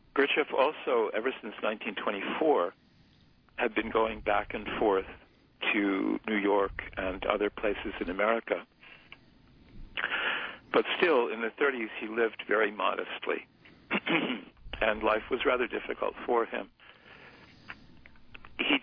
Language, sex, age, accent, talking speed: English, male, 60-79, American, 115 wpm